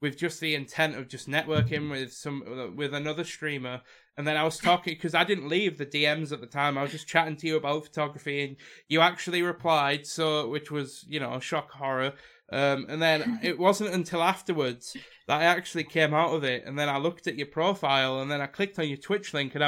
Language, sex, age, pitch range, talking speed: English, male, 20-39, 140-175 Hz, 230 wpm